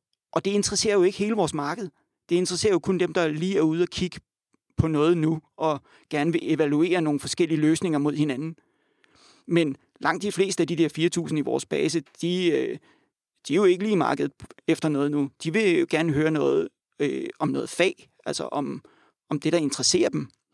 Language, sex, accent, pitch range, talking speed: Danish, male, native, 150-180 Hz, 200 wpm